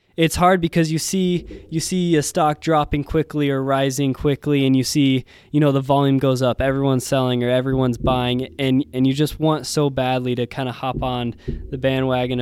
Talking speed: 205 wpm